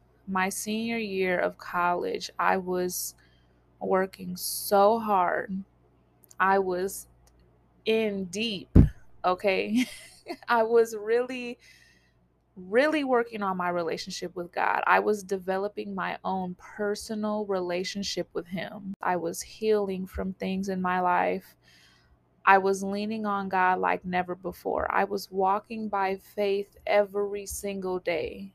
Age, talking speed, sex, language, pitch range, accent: 20-39, 120 wpm, female, English, 180-210 Hz, American